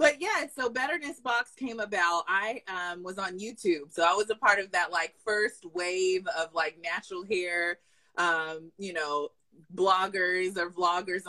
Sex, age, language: female, 20-39, English